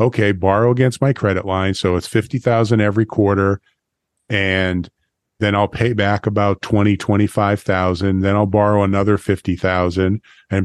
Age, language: 40-59, English